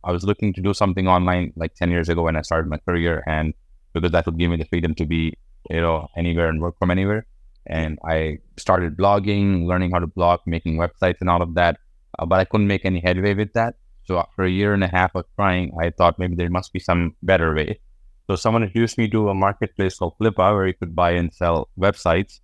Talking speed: 240 wpm